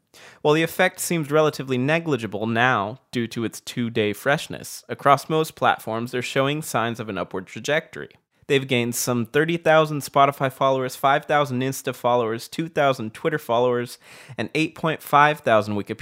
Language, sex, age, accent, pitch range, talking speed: English, male, 20-39, American, 115-150 Hz, 135 wpm